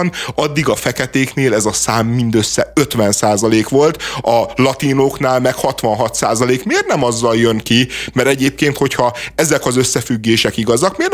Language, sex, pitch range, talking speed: Hungarian, male, 115-135 Hz, 140 wpm